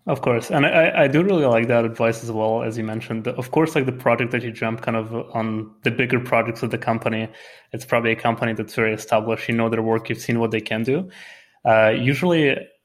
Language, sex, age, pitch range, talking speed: English, male, 20-39, 110-120 Hz, 240 wpm